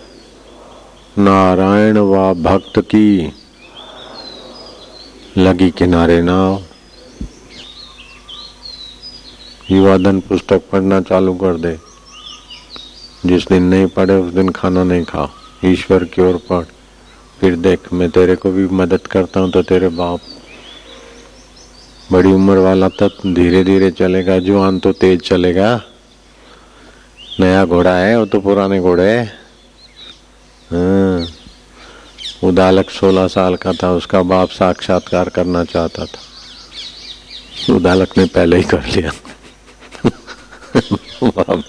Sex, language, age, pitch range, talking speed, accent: male, Hindi, 50-69, 90-95 Hz, 110 wpm, native